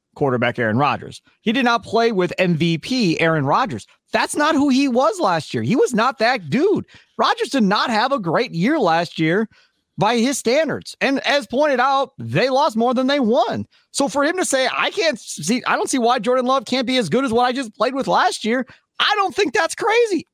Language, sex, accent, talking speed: English, male, American, 225 wpm